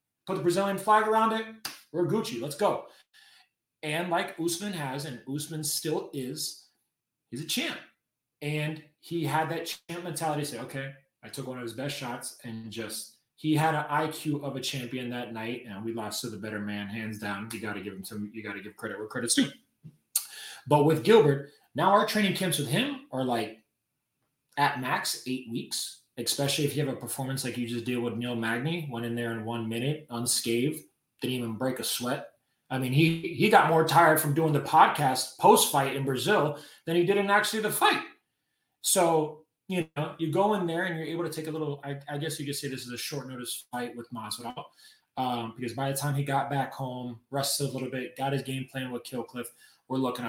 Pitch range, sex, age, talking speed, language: 120-160 Hz, male, 30-49, 215 wpm, English